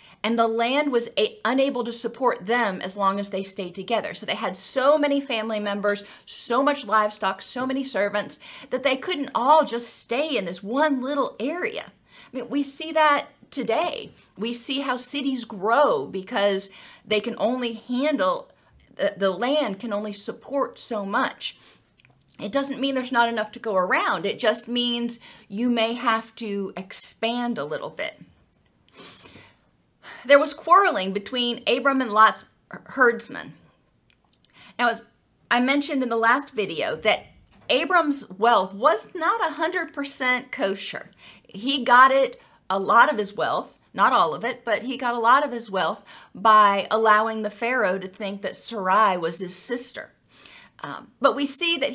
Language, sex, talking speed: English, female, 165 wpm